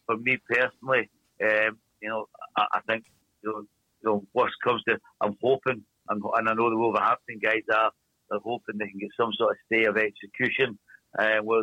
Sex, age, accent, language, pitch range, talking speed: male, 60-79, British, English, 105-115 Hz, 195 wpm